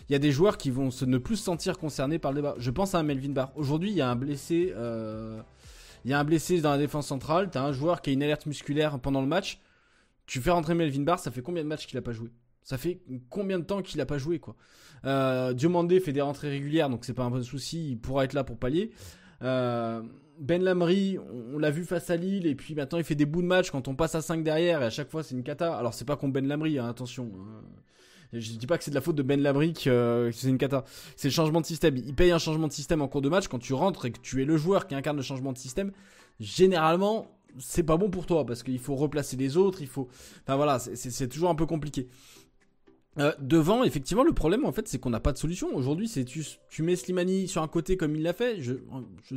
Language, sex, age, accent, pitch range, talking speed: French, male, 20-39, French, 130-170 Hz, 275 wpm